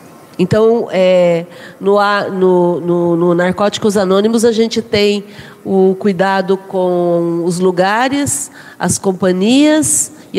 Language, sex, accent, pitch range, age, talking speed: Portuguese, female, Brazilian, 185-235 Hz, 40-59, 105 wpm